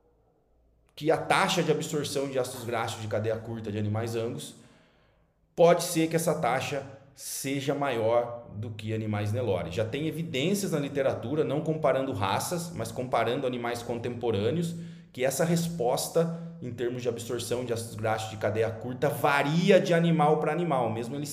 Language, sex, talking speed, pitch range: Portuguese, male, 160 wpm, 115-170 Hz